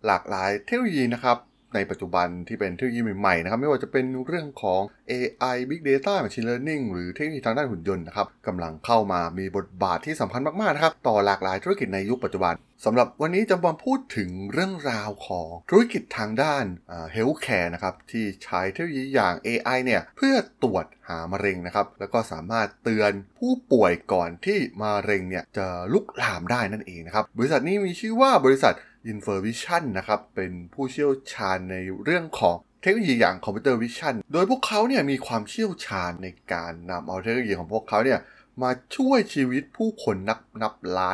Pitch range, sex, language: 95-150 Hz, male, Thai